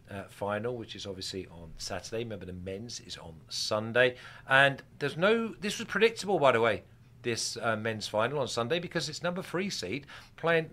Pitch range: 105-140 Hz